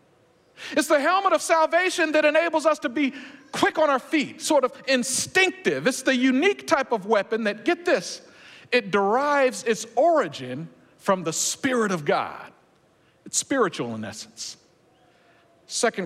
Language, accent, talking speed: English, American, 150 wpm